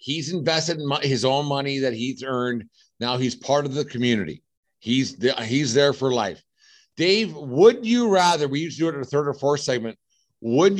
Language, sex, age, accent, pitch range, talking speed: English, male, 50-69, American, 120-150 Hz, 205 wpm